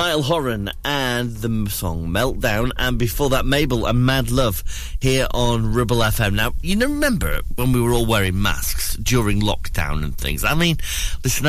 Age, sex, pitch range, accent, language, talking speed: 30-49, male, 90-130 Hz, British, English, 180 wpm